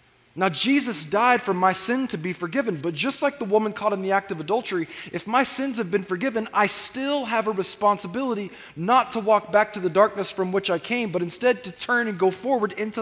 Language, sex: English, male